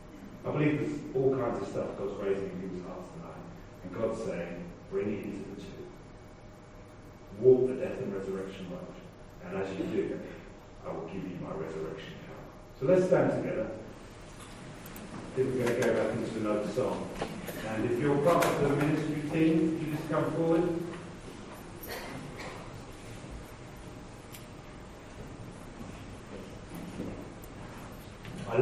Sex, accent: male, British